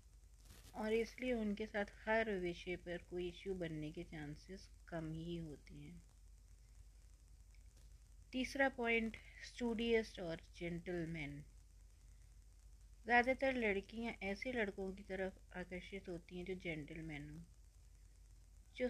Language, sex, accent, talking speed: Hindi, female, native, 110 wpm